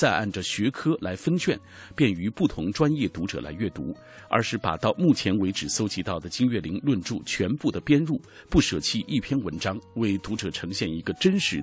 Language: Chinese